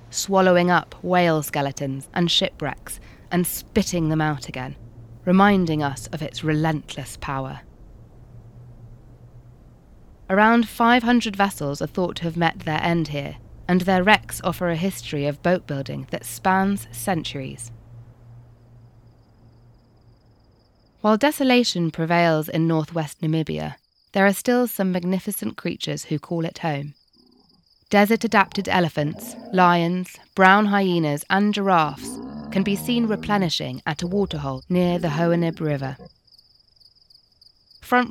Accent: British